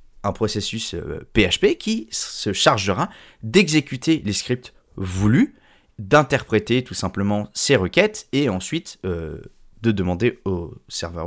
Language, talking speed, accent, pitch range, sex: French, 115 wpm, French, 95-135 Hz, male